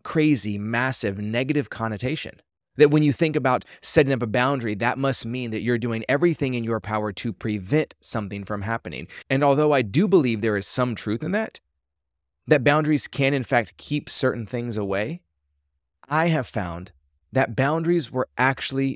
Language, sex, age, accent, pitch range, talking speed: English, male, 20-39, American, 105-135 Hz, 175 wpm